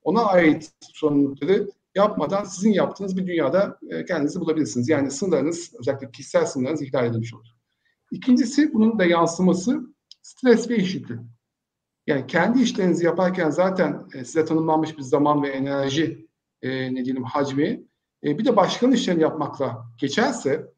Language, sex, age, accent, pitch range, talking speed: Turkish, male, 50-69, native, 145-185 Hz, 135 wpm